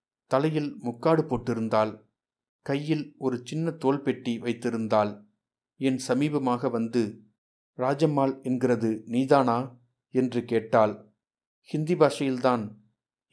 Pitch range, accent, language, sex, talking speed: 115-135 Hz, native, Tamil, male, 85 wpm